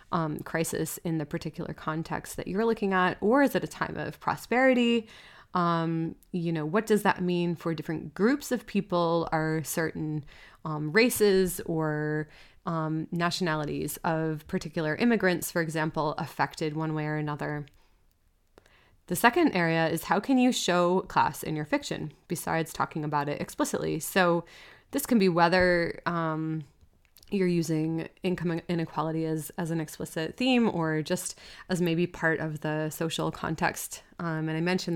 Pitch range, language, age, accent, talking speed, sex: 155-190 Hz, English, 20-39, American, 155 wpm, female